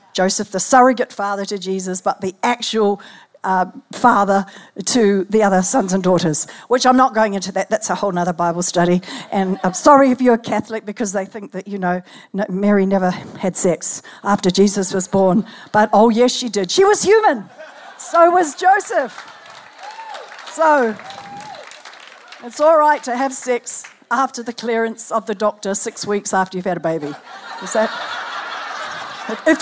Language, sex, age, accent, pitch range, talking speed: English, female, 50-69, Australian, 195-255 Hz, 170 wpm